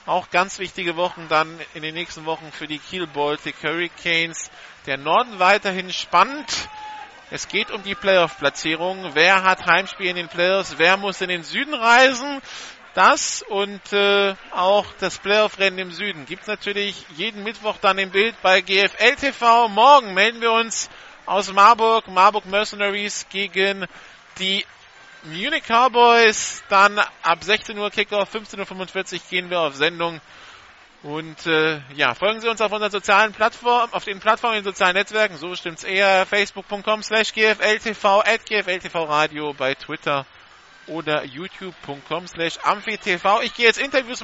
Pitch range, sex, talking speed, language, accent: 165-215 Hz, male, 150 wpm, German, German